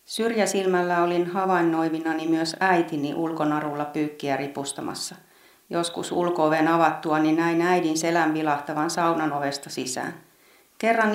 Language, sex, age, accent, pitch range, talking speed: Finnish, female, 40-59, native, 155-185 Hz, 110 wpm